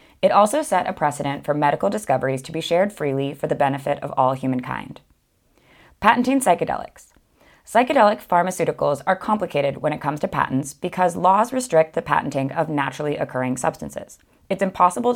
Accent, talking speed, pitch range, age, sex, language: American, 160 wpm, 140-180 Hz, 20-39, female, English